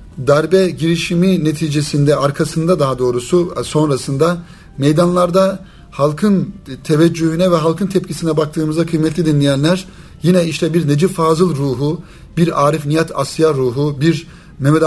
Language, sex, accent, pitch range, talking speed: Turkish, male, native, 145-170 Hz, 115 wpm